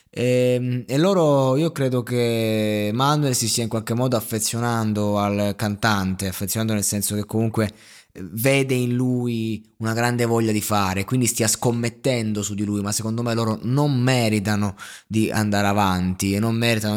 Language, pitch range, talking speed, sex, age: Italian, 105-130 Hz, 160 wpm, male, 20-39